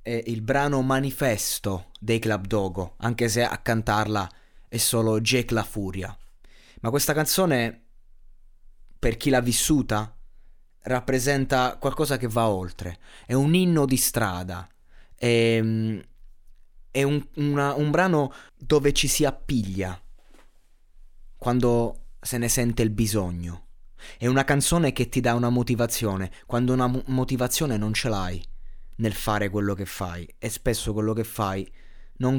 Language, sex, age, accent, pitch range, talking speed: Italian, male, 20-39, native, 105-125 Hz, 140 wpm